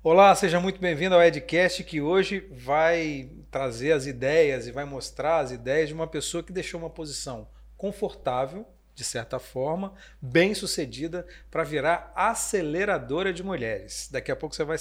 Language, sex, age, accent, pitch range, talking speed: Portuguese, male, 40-59, Brazilian, 140-185 Hz, 160 wpm